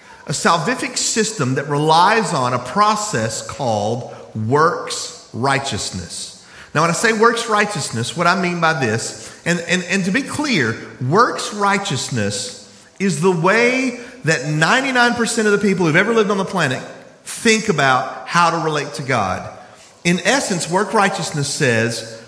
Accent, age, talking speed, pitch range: American, 40-59, 150 wpm, 130-205 Hz